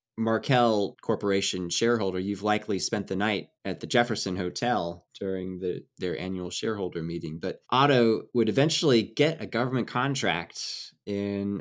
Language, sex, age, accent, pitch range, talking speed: English, male, 20-39, American, 95-115 Hz, 135 wpm